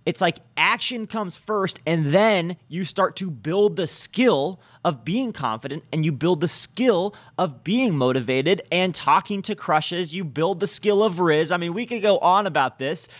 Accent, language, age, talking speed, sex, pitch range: American, English, 20-39, 190 wpm, male, 130-190 Hz